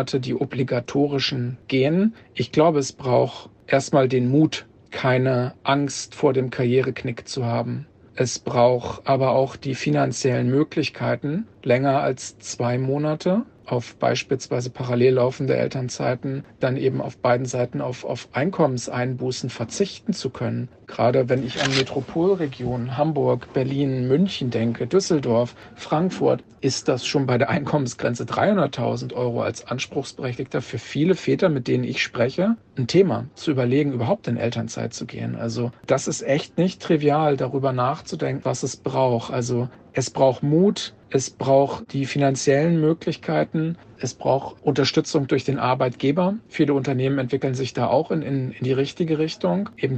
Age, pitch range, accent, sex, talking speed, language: 40-59, 125-150 Hz, German, male, 145 wpm, German